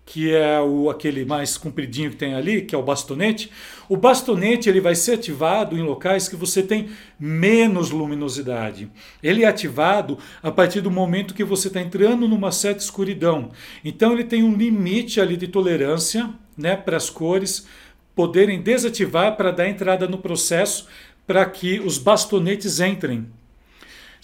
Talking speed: 150 wpm